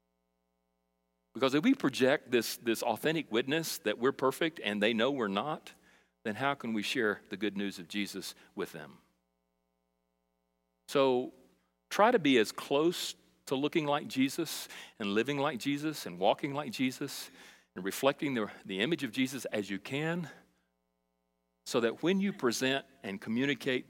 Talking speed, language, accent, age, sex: 160 wpm, English, American, 40-59, male